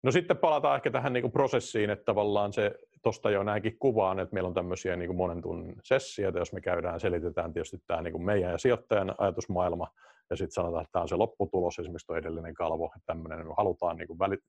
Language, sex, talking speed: Finnish, male, 215 wpm